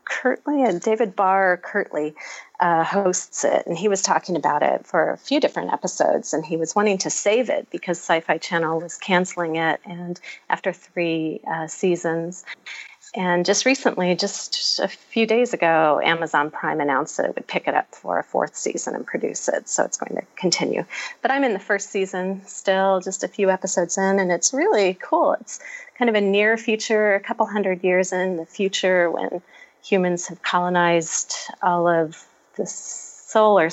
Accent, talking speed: American, 180 wpm